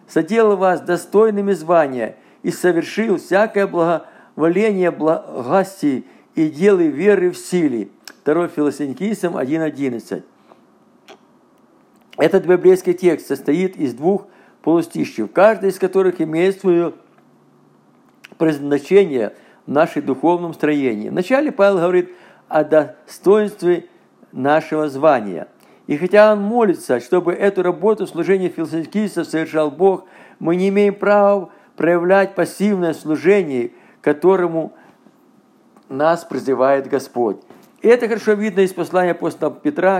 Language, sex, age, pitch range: Russian, male, 50-69, 155-195 Hz